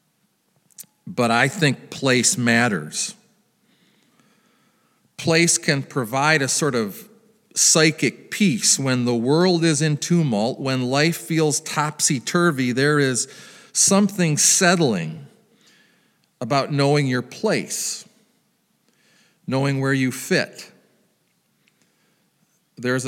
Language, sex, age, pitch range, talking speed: English, male, 40-59, 145-200 Hz, 95 wpm